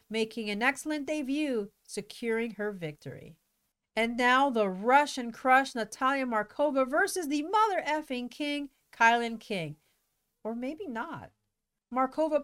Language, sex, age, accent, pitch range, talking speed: English, female, 40-59, American, 225-305 Hz, 120 wpm